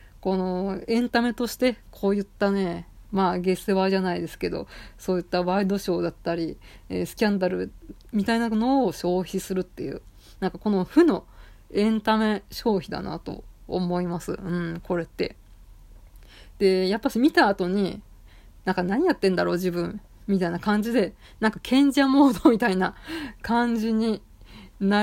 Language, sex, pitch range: Japanese, female, 175-220 Hz